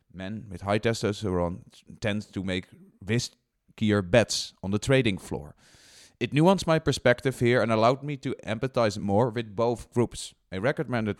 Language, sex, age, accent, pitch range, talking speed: English, male, 30-49, Dutch, 105-130 Hz, 160 wpm